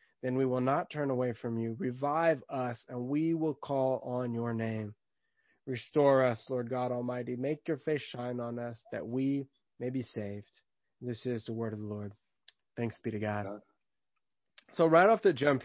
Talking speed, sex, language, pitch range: 190 wpm, male, English, 120-135 Hz